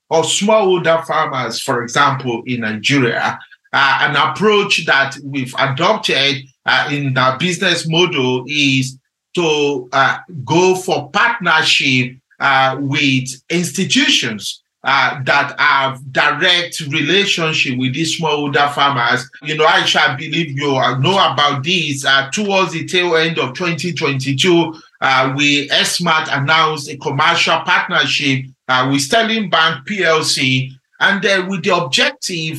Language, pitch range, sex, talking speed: English, 135-175 Hz, male, 130 wpm